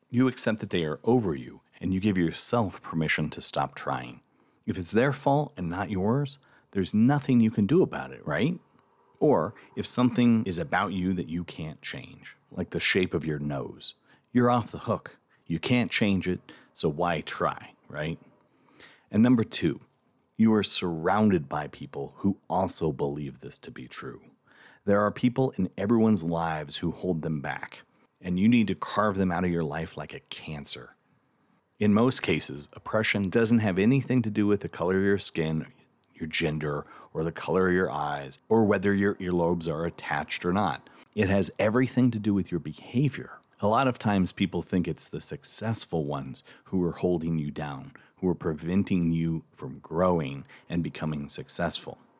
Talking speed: 185 wpm